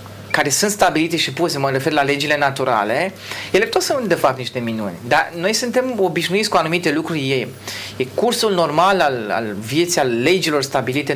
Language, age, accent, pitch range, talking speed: Romanian, 30-49, native, 130-185 Hz, 185 wpm